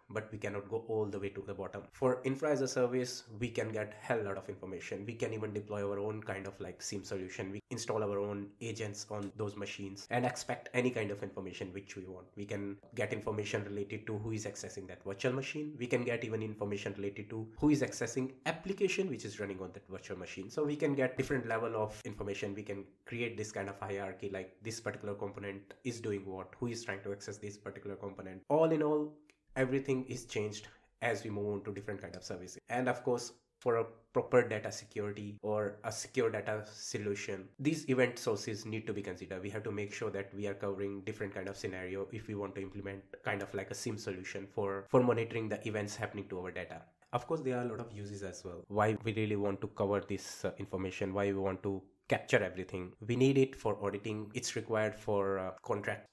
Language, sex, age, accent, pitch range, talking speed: English, male, 20-39, Indian, 100-120 Hz, 225 wpm